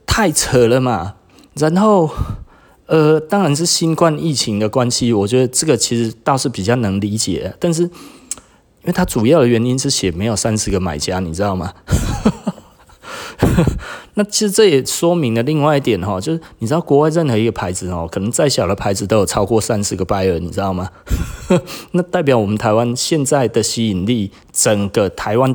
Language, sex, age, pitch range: Chinese, male, 30-49, 105-145 Hz